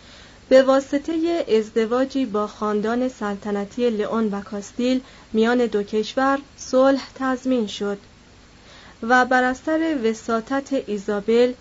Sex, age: female, 30-49